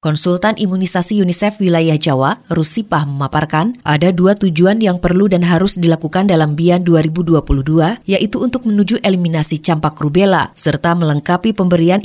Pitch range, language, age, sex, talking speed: 165-210 Hz, Indonesian, 30-49, female, 135 wpm